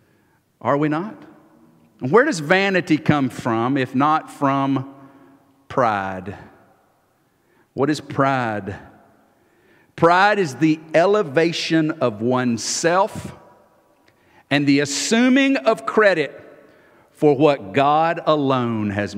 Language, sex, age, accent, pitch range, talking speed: English, male, 50-69, American, 105-165 Hz, 95 wpm